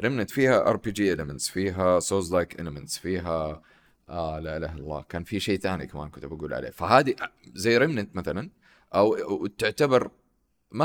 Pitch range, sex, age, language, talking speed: 80-105 Hz, male, 30-49, Arabic, 165 wpm